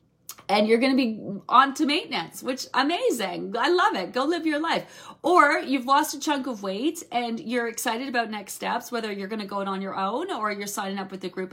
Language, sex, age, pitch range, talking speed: English, female, 30-49, 200-285 Hz, 240 wpm